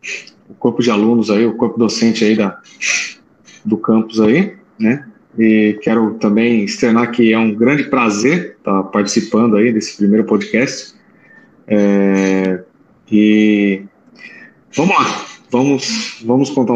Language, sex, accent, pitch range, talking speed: Portuguese, male, Brazilian, 115-165 Hz, 130 wpm